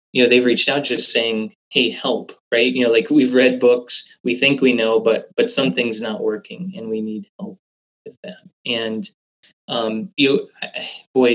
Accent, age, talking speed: American, 20-39, 185 wpm